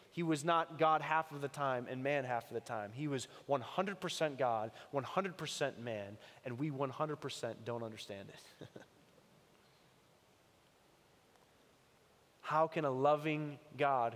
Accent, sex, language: American, male, English